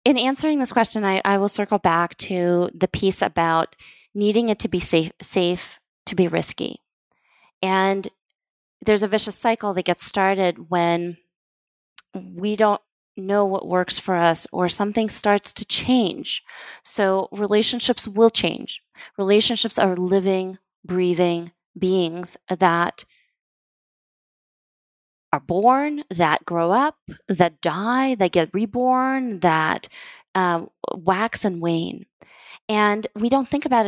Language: English